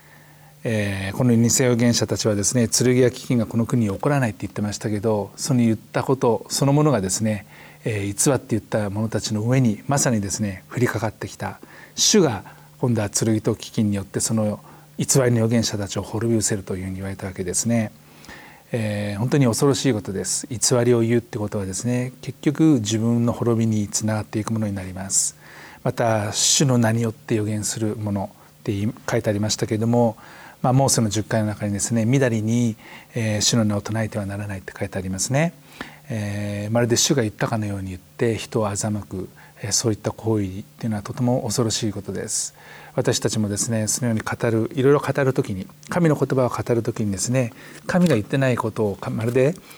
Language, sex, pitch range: Japanese, male, 105-125 Hz